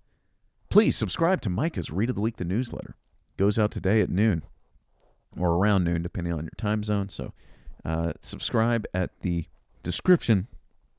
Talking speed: 165 wpm